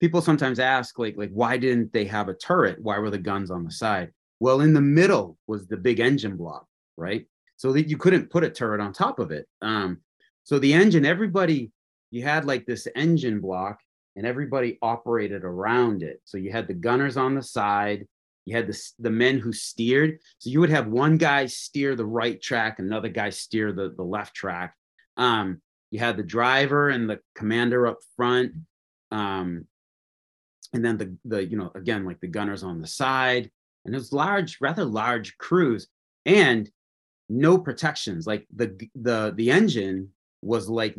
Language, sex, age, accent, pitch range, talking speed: English, male, 30-49, American, 105-140 Hz, 185 wpm